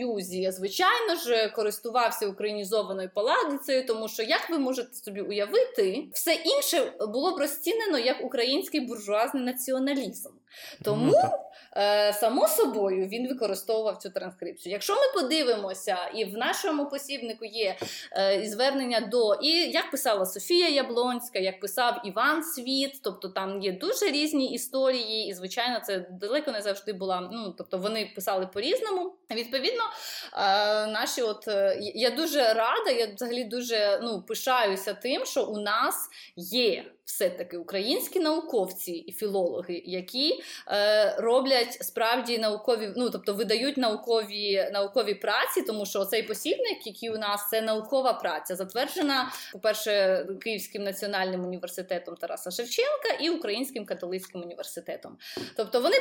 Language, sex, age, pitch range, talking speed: Ukrainian, female, 20-39, 200-275 Hz, 130 wpm